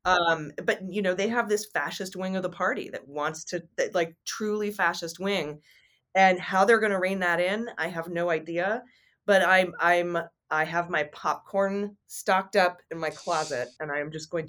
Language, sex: English, female